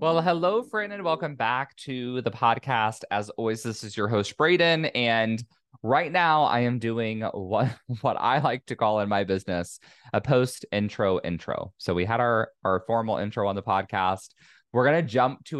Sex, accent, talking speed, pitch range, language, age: male, American, 190 wpm, 100-130 Hz, English, 20-39